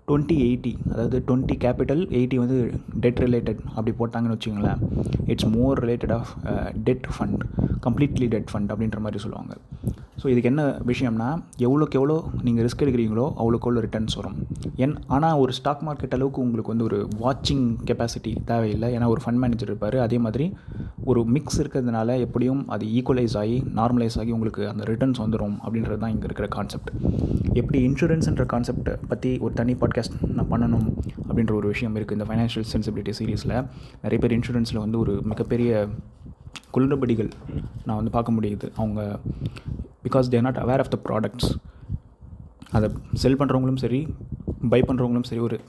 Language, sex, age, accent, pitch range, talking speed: Tamil, male, 20-39, native, 110-125 Hz, 155 wpm